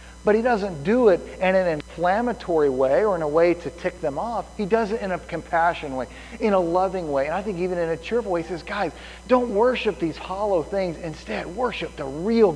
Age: 40-59